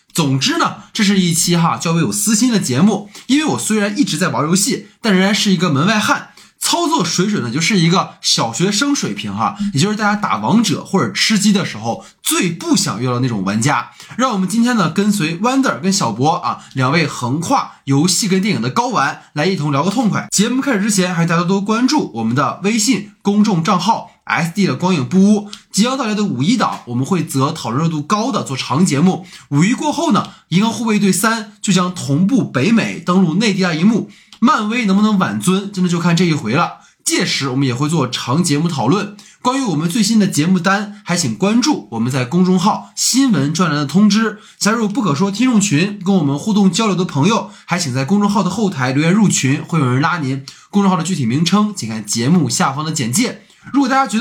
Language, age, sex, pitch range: Chinese, 20-39, male, 160-210 Hz